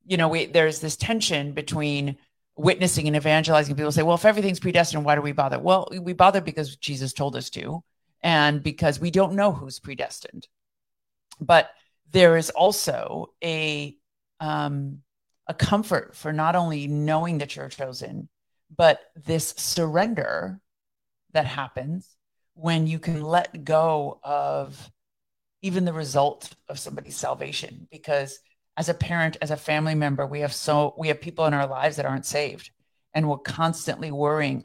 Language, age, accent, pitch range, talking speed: English, 50-69, American, 145-165 Hz, 160 wpm